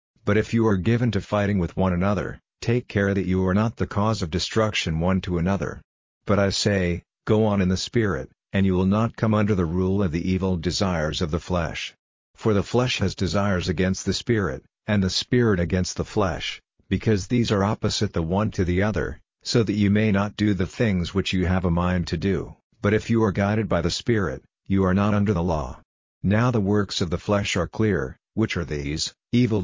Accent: American